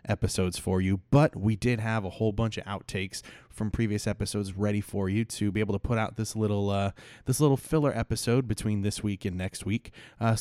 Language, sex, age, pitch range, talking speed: English, male, 20-39, 95-110 Hz, 220 wpm